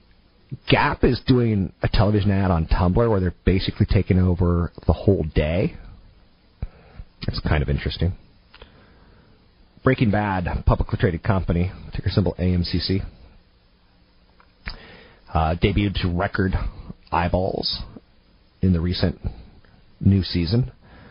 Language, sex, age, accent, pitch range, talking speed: English, male, 40-59, American, 90-105 Hz, 110 wpm